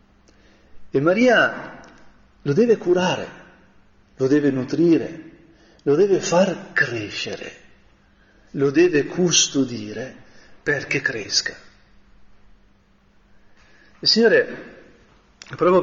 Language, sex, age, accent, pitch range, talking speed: Italian, male, 40-59, native, 130-195 Hz, 70 wpm